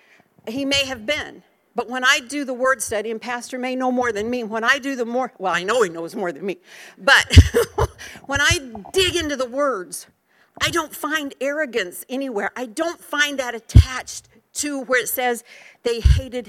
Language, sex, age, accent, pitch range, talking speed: English, female, 50-69, American, 225-280 Hz, 195 wpm